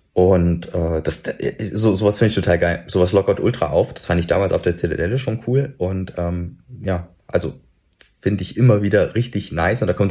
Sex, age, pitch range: male, 30-49, 85-110 Hz